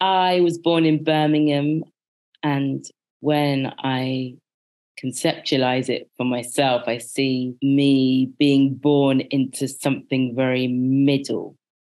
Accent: British